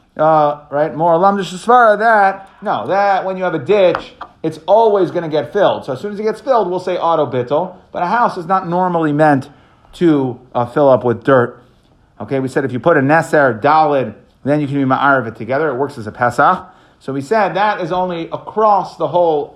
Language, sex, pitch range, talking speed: English, male, 135-175 Hz, 235 wpm